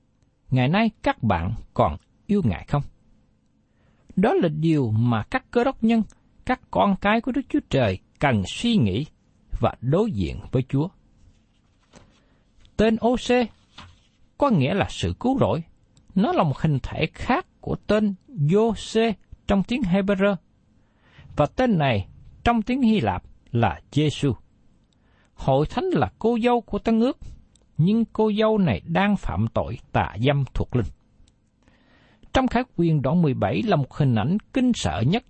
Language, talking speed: Vietnamese, 155 wpm